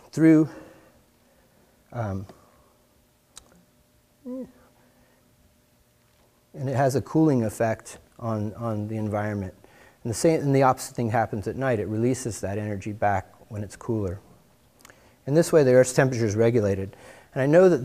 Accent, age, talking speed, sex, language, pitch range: American, 40-59, 140 wpm, male, English, 105-125 Hz